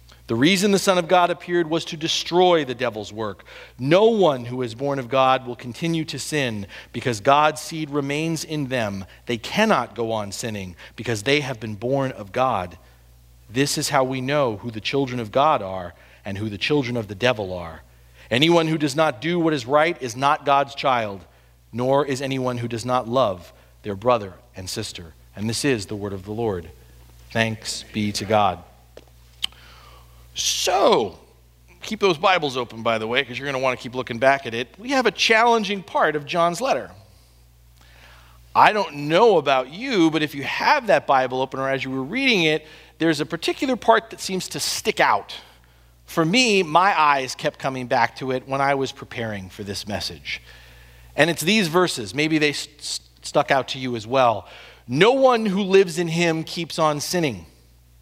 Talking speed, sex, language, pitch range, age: 195 wpm, male, English, 100-155 Hz, 40-59